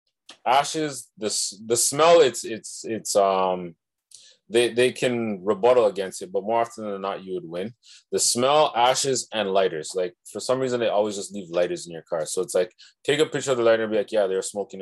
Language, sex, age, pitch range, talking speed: English, male, 20-39, 105-155 Hz, 220 wpm